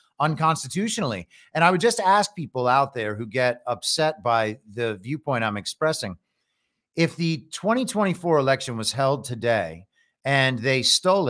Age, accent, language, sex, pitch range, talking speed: 40-59, American, English, male, 125-165 Hz, 145 wpm